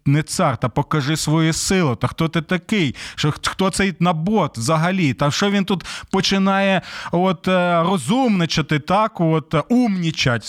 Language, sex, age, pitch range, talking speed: Ukrainian, male, 20-39, 150-215 Hz, 145 wpm